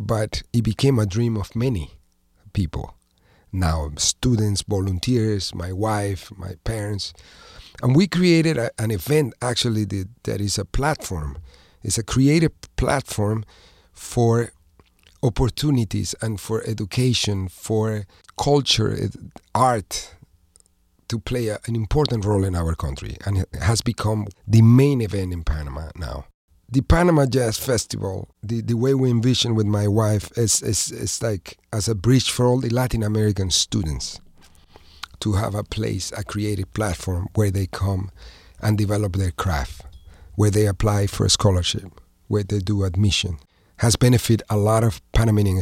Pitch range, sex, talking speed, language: 90-115 Hz, male, 150 wpm, English